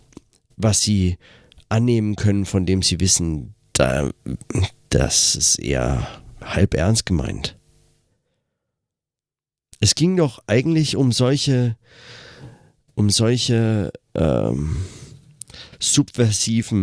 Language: German